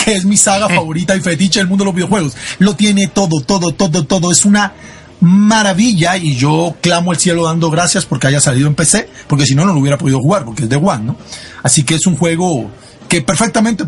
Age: 40-59